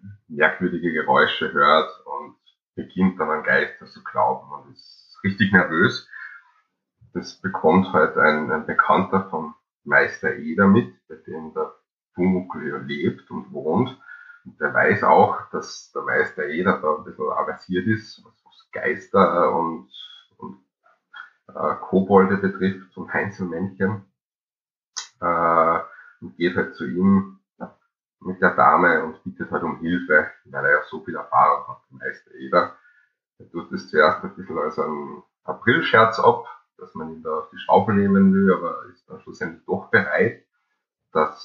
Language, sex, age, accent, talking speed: German, male, 30-49, Austrian, 150 wpm